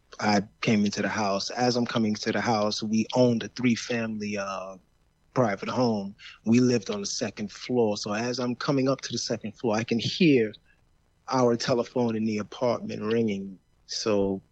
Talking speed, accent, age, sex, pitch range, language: 175 wpm, American, 30-49, male, 105-120 Hz, English